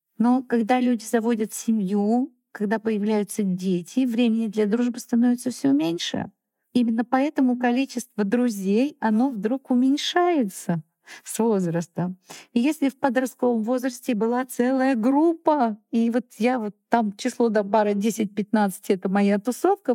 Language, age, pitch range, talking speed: Russian, 50-69, 195-245 Hz, 130 wpm